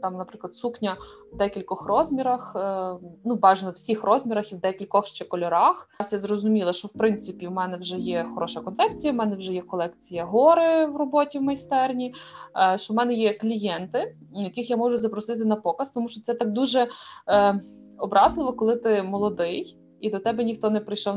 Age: 20-39